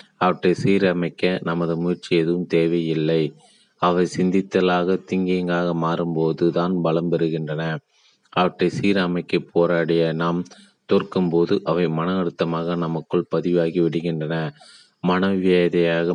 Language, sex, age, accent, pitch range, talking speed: Tamil, male, 30-49, native, 85-90 Hz, 95 wpm